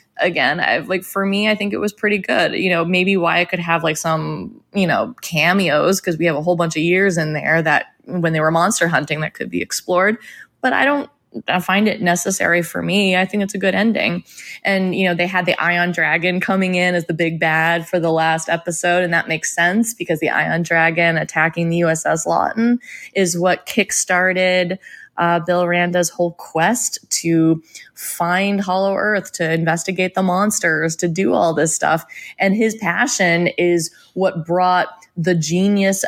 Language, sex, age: English, female, 20-39